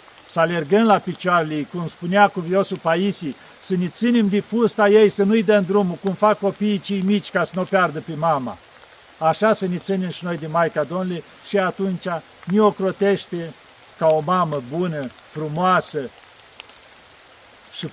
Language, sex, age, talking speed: Romanian, male, 50-69, 160 wpm